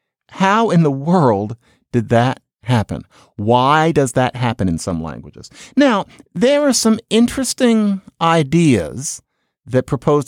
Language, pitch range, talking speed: English, 115-175 Hz, 130 wpm